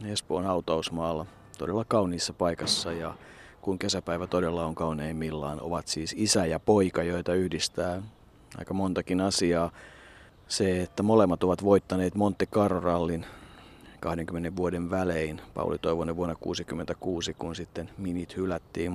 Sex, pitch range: male, 85-105 Hz